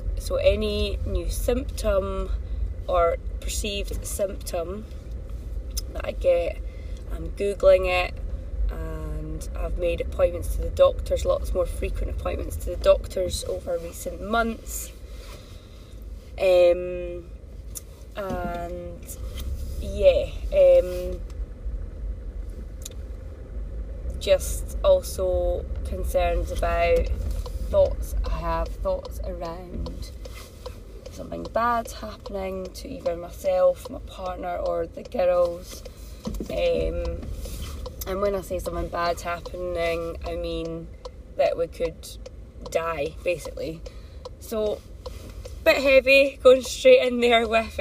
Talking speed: 100 wpm